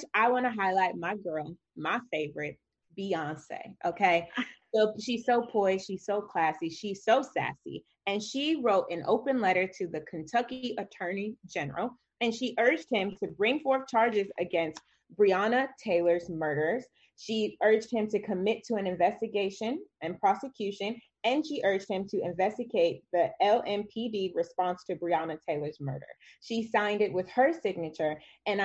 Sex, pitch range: female, 175-230 Hz